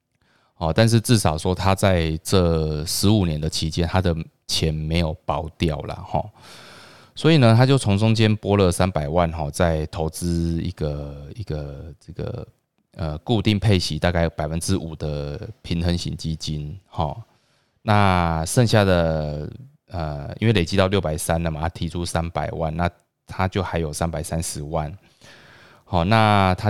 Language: Chinese